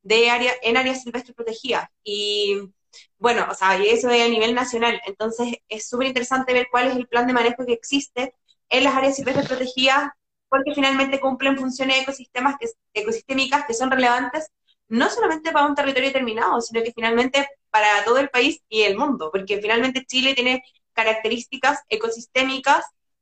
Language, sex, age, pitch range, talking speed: Spanish, female, 20-39, 225-270 Hz, 170 wpm